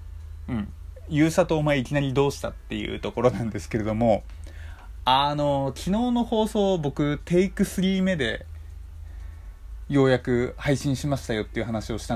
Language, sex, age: Japanese, male, 20-39